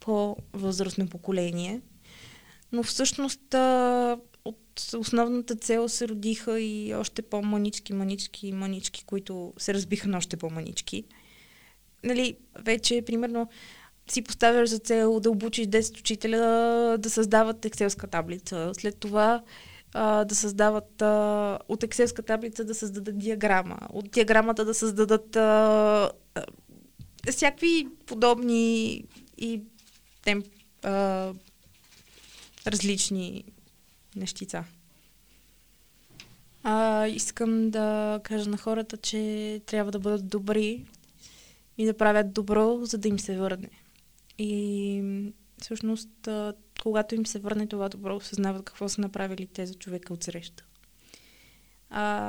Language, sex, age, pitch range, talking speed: Bulgarian, female, 20-39, 200-225 Hz, 110 wpm